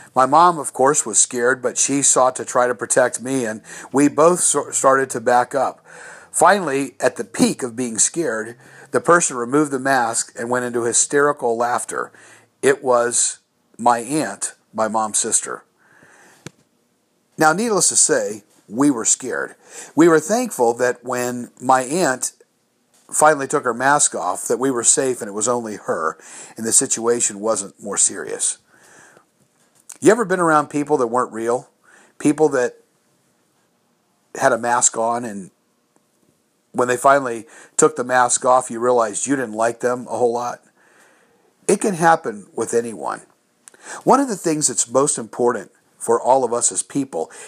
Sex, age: male, 50-69